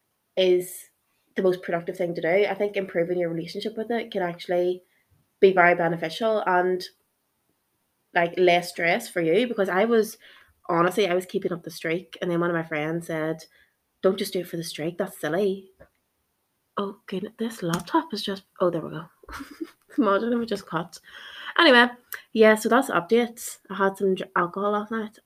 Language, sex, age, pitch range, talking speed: English, female, 20-39, 170-210 Hz, 185 wpm